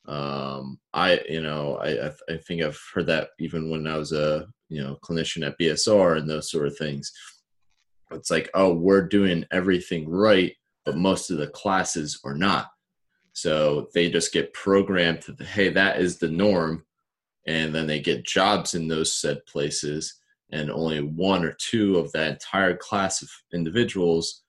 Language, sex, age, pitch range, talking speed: English, male, 30-49, 75-90 Hz, 175 wpm